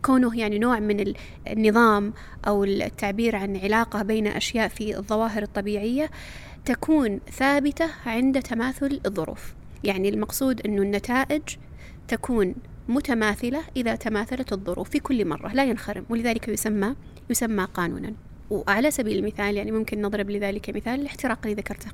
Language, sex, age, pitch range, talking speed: Arabic, female, 20-39, 210-260 Hz, 130 wpm